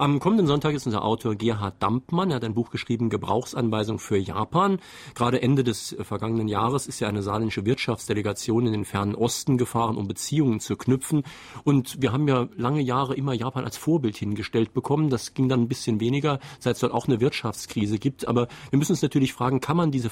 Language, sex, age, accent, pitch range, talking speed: German, male, 40-59, German, 105-135 Hz, 205 wpm